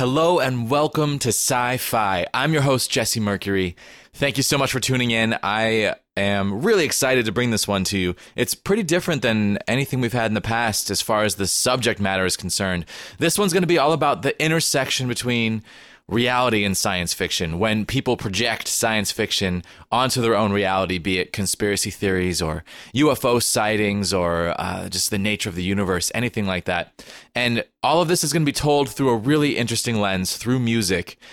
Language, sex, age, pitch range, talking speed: English, male, 20-39, 100-135 Hz, 195 wpm